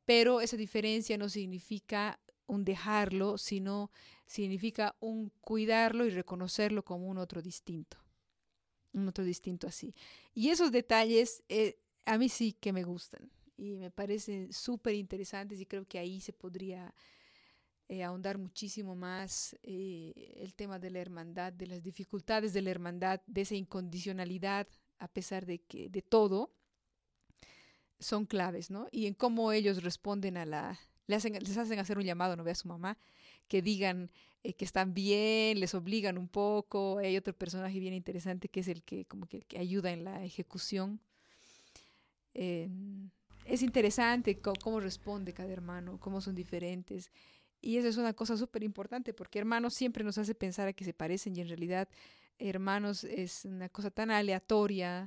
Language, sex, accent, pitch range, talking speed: Spanish, female, Mexican, 185-215 Hz, 165 wpm